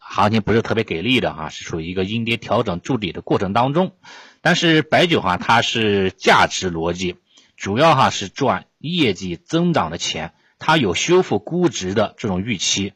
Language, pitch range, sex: Chinese, 100-130 Hz, male